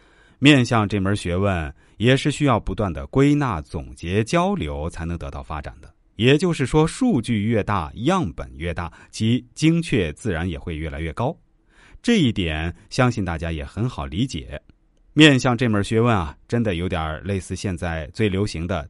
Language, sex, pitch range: Chinese, male, 80-130 Hz